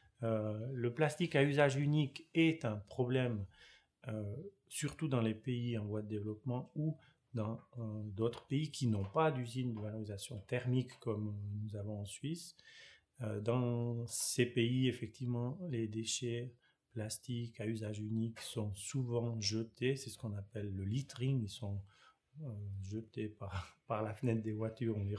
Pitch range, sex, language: 105-125 Hz, male, French